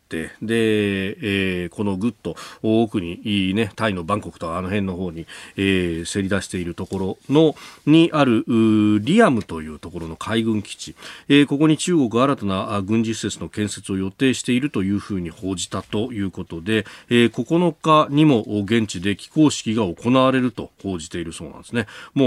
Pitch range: 95-125 Hz